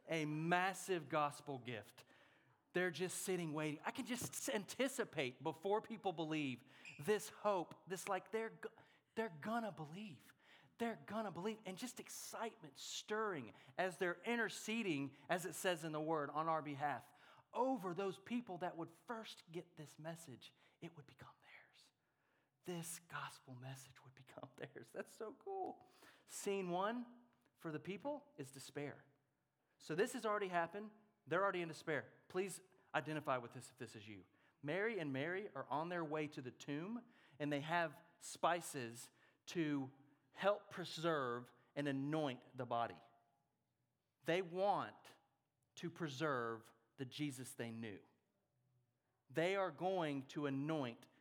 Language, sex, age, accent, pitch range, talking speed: English, male, 30-49, American, 135-185 Hz, 145 wpm